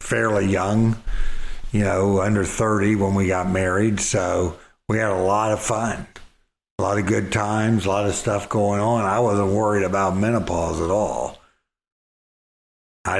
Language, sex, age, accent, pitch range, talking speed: English, male, 60-79, American, 95-105 Hz, 165 wpm